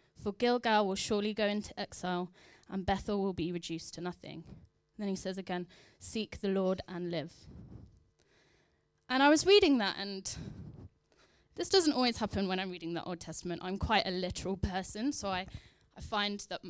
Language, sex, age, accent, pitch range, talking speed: English, female, 10-29, British, 175-230 Hz, 175 wpm